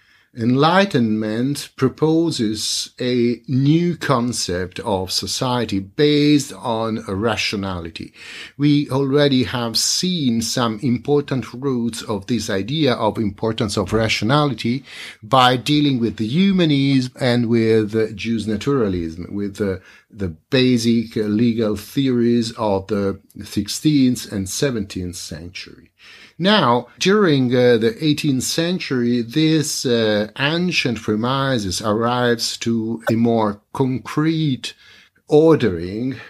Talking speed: 100 wpm